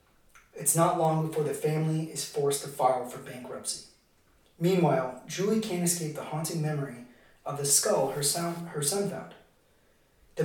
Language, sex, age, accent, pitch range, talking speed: English, male, 30-49, American, 135-170 Hz, 160 wpm